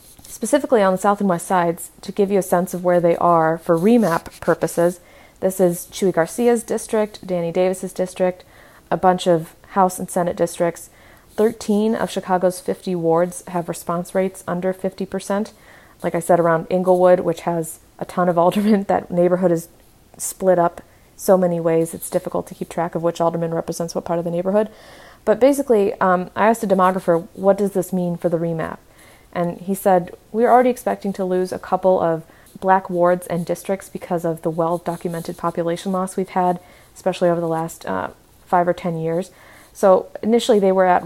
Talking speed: 185 wpm